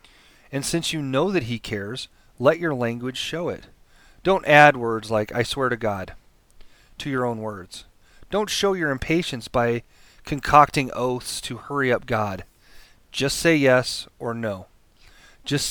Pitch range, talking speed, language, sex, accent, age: 110-150 Hz, 155 wpm, English, male, American, 30-49